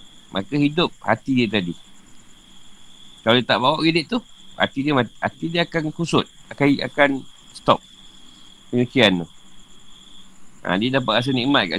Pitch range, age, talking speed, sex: 110-145 Hz, 50-69, 155 wpm, male